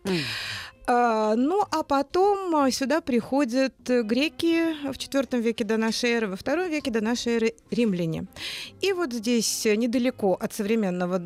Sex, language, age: female, Russian, 30-49